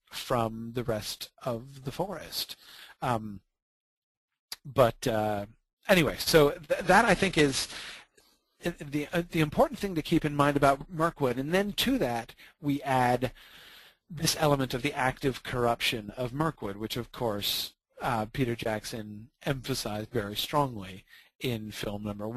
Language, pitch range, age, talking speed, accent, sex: English, 110-140 Hz, 40-59, 140 wpm, American, male